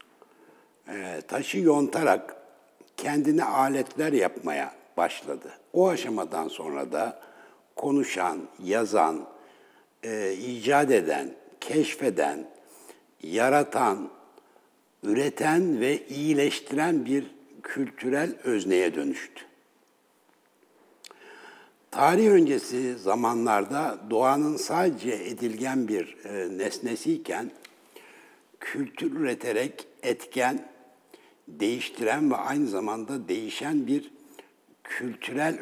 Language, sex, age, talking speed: Turkish, male, 60-79, 70 wpm